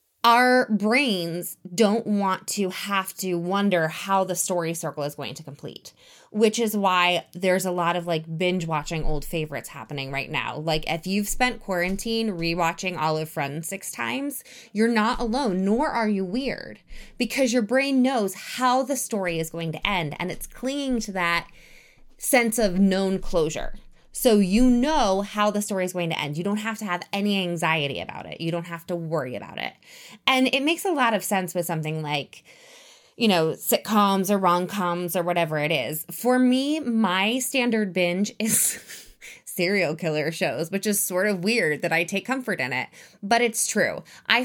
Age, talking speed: 20-39, 185 wpm